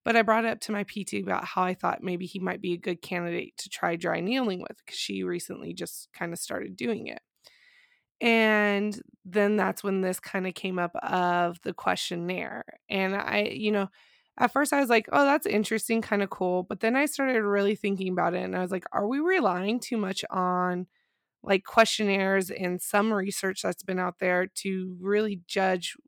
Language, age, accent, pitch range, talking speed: English, 20-39, American, 185-215 Hz, 205 wpm